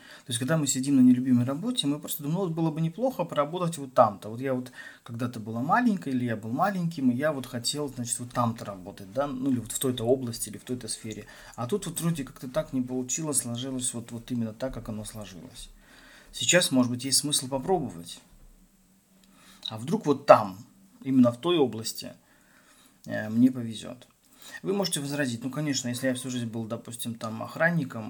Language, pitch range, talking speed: Russian, 115-135 Hz, 195 wpm